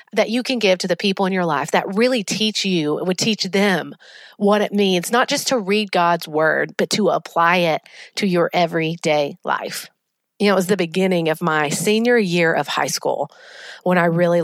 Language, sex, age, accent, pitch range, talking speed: English, female, 40-59, American, 160-205 Hz, 210 wpm